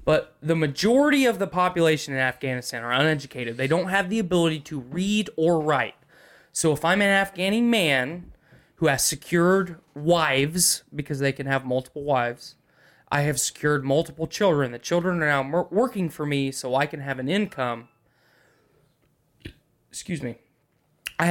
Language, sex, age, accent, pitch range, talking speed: English, male, 20-39, American, 135-175 Hz, 160 wpm